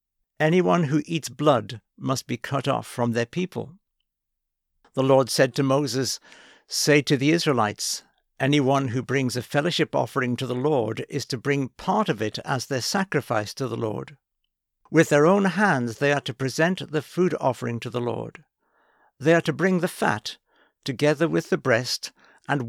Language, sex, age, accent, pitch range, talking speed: English, male, 60-79, British, 125-155 Hz, 175 wpm